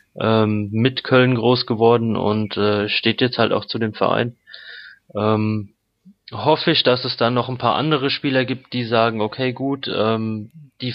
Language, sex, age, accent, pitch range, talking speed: German, male, 20-39, German, 110-125 Hz, 175 wpm